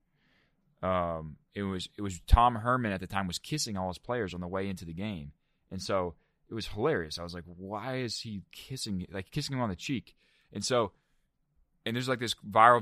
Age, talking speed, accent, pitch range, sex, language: 20-39, 215 wpm, American, 95-125 Hz, male, English